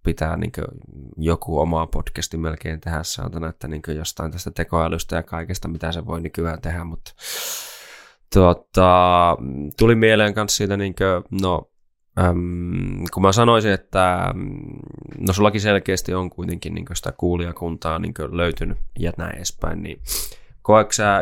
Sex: male